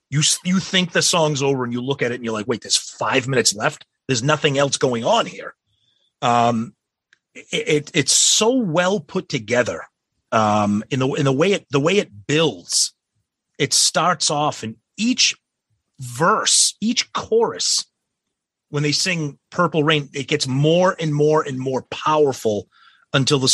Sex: male